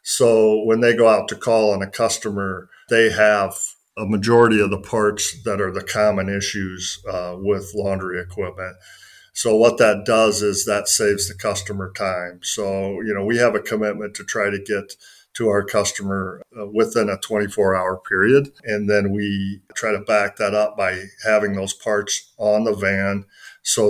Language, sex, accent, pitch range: English, male, American, 100-110 Hz